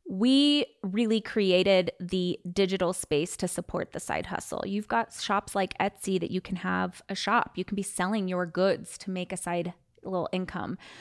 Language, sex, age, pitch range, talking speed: English, female, 20-39, 190-235 Hz, 185 wpm